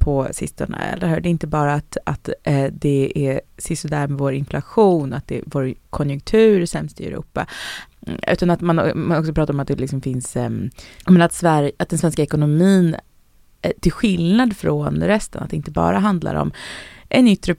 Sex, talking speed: female, 165 wpm